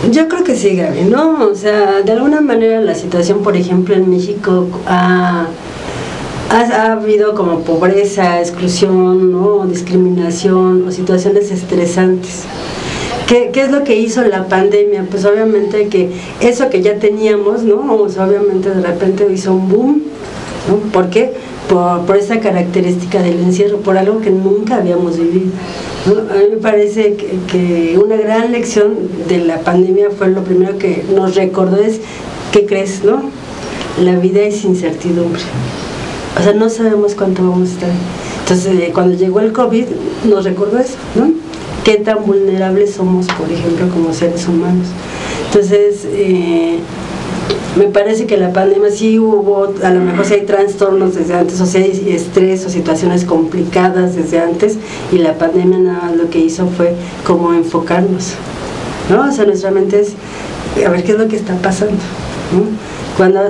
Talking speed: 165 wpm